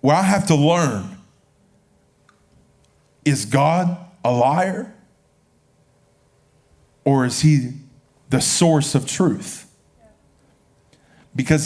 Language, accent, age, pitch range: English, American, 40-59, 150-190 Hz